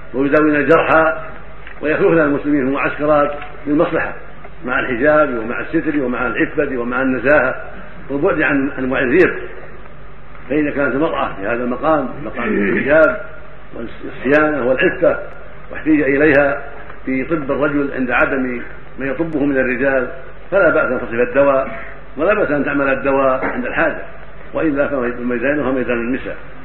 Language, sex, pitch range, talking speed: Arabic, male, 130-150 Hz, 125 wpm